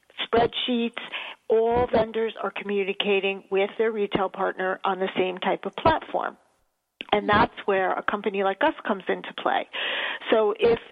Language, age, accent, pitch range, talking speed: English, 40-59, American, 195-235 Hz, 150 wpm